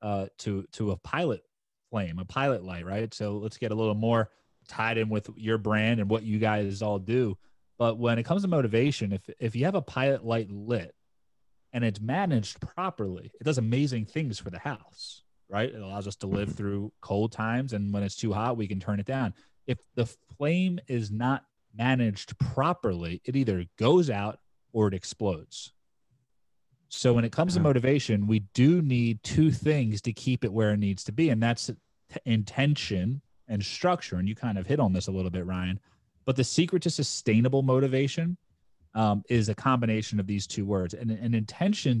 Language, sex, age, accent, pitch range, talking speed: English, male, 30-49, American, 105-130 Hz, 195 wpm